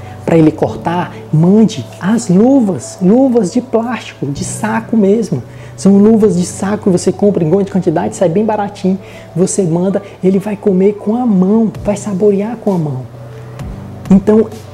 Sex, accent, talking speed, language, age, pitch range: male, Brazilian, 155 wpm, Portuguese, 20-39, 160-205 Hz